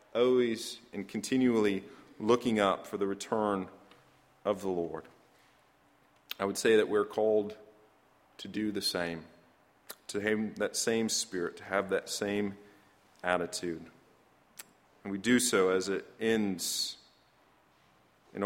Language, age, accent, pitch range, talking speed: English, 40-59, American, 95-115 Hz, 125 wpm